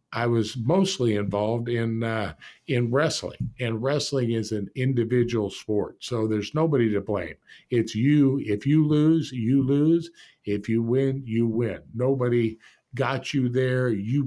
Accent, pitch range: American, 110-130 Hz